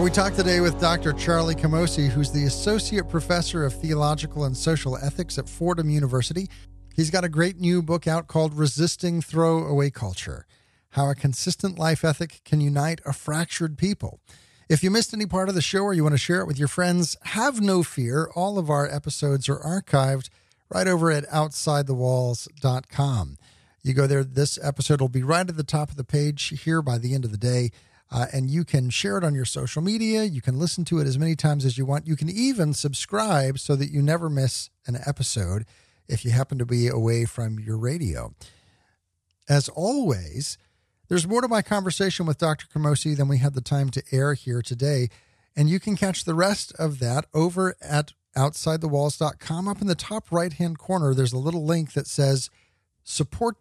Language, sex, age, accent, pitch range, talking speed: English, male, 40-59, American, 130-170 Hz, 195 wpm